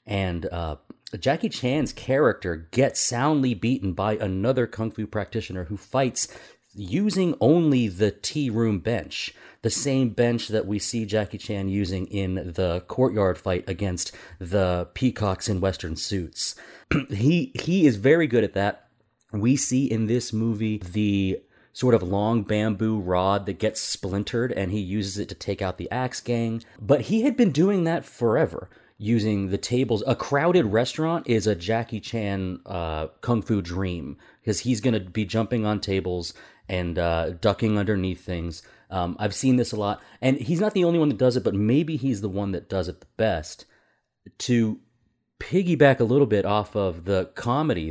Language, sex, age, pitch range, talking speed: English, male, 30-49, 95-125 Hz, 175 wpm